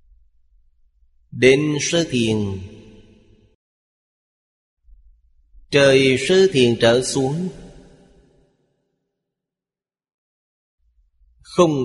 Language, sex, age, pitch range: Vietnamese, male, 30-49, 105-135 Hz